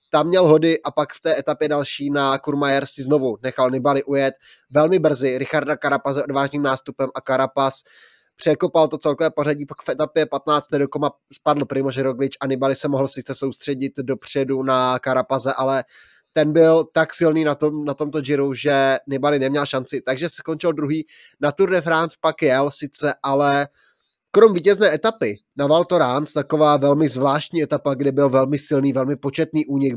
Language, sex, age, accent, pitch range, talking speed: Czech, male, 20-39, native, 135-150 Hz, 180 wpm